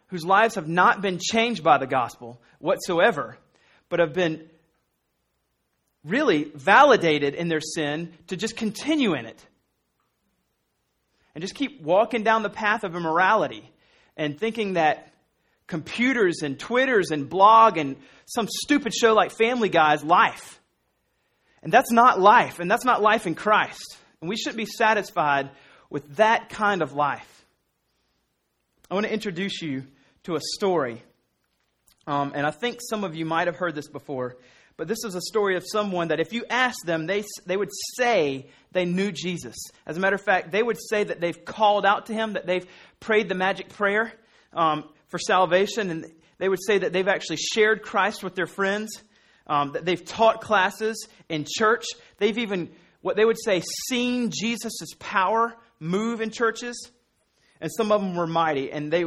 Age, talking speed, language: 30-49, 170 wpm, English